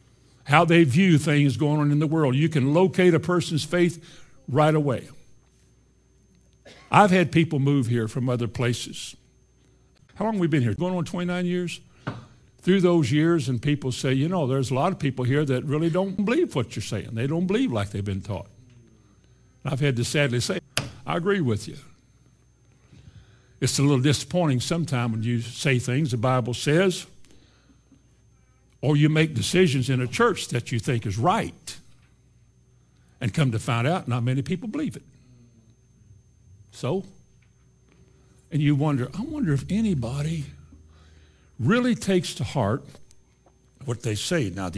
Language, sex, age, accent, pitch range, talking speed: English, male, 60-79, American, 120-170 Hz, 165 wpm